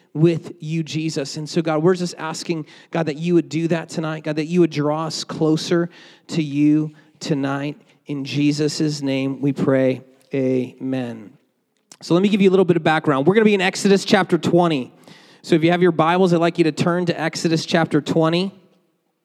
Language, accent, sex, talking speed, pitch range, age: English, American, male, 205 wpm, 150-200 Hz, 30-49